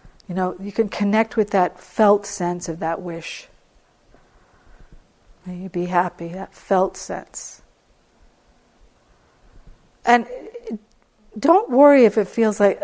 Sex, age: female, 50-69